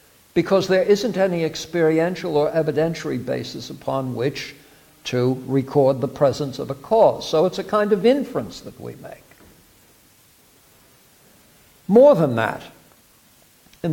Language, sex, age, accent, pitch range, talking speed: English, male, 60-79, American, 140-190 Hz, 130 wpm